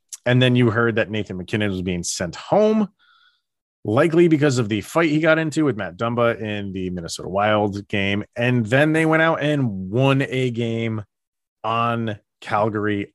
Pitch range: 105-130 Hz